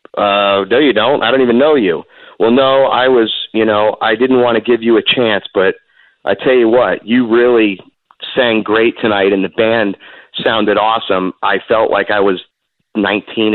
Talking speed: 195 wpm